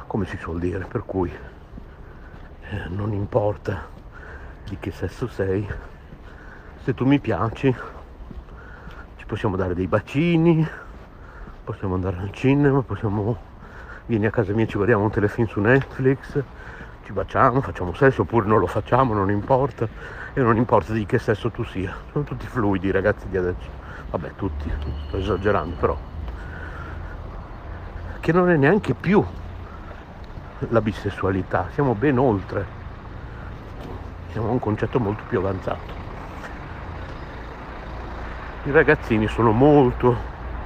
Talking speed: 130 wpm